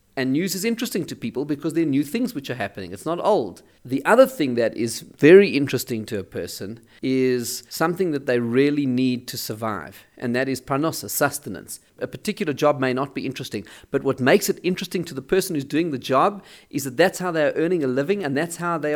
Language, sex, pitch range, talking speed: English, male, 130-175 Hz, 225 wpm